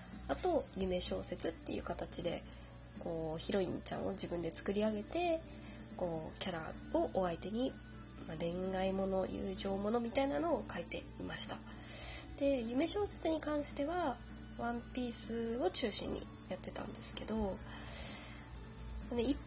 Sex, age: female, 20-39